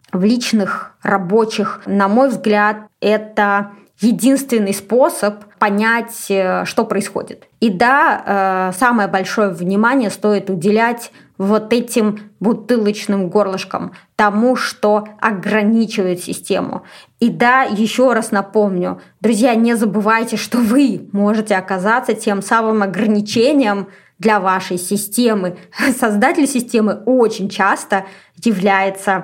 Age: 20-39